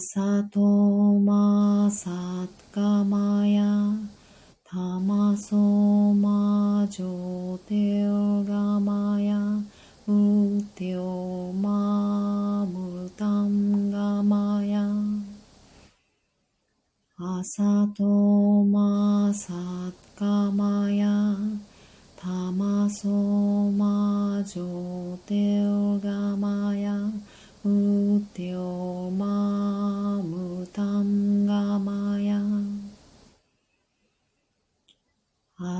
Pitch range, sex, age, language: 200-205 Hz, female, 30-49, Japanese